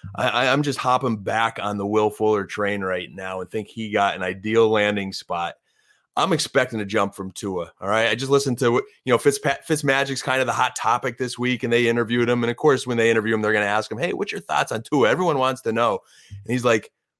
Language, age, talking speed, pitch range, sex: English, 30-49, 255 wpm, 110-135 Hz, male